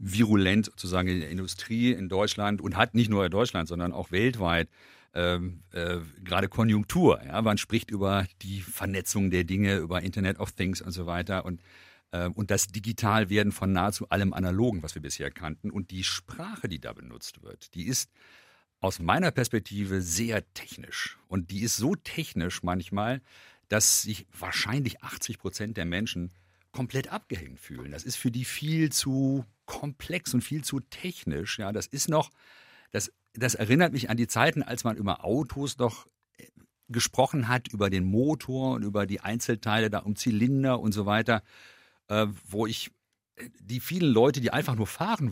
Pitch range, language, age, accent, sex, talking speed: 95-125 Hz, German, 50-69, German, male, 170 wpm